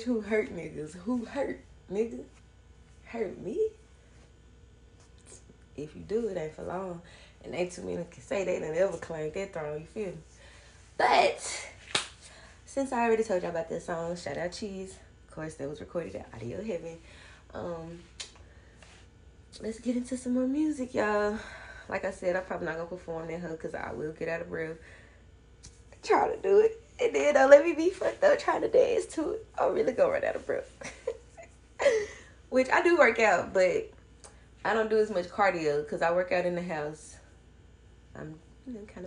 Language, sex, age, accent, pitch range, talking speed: English, female, 20-39, American, 155-250 Hz, 190 wpm